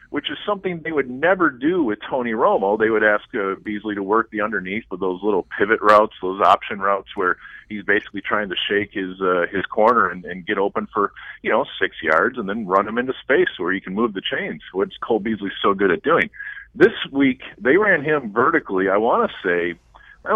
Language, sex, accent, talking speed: English, male, American, 225 wpm